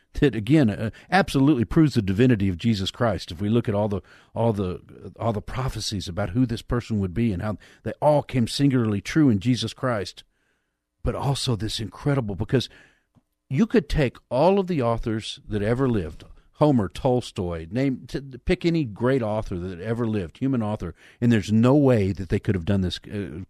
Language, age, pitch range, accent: English, 50-69, 90-120 Hz, American